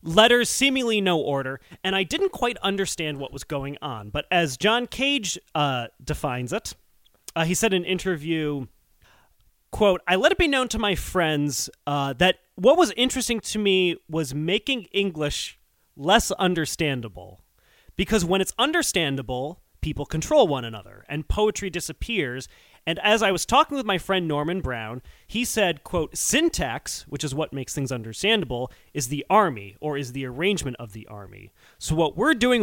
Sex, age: male, 30-49